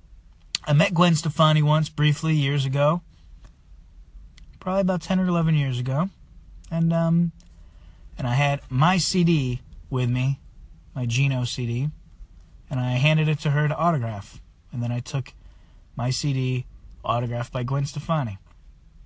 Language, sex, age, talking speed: English, male, 30-49, 140 wpm